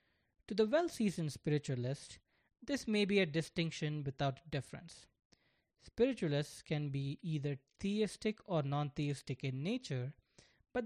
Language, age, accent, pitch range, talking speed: English, 20-39, Indian, 140-200 Hz, 115 wpm